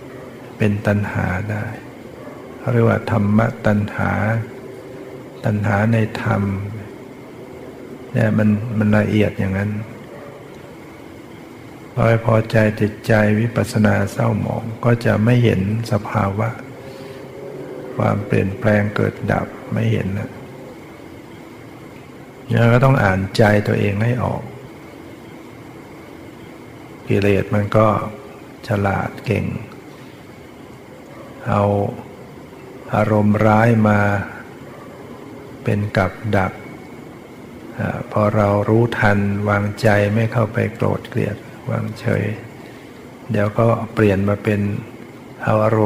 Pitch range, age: 105-120 Hz, 60-79